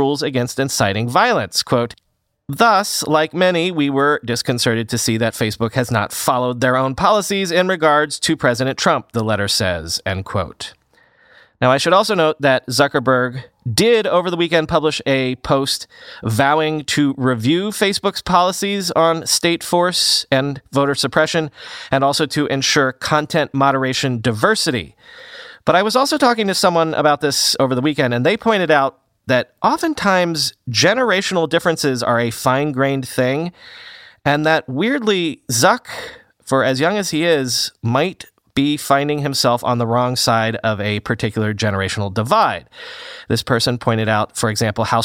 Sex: male